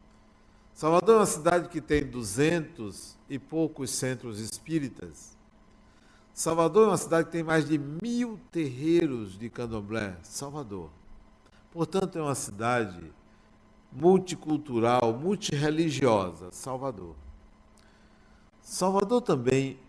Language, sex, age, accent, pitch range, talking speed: Portuguese, male, 60-79, Brazilian, 110-160 Hz, 100 wpm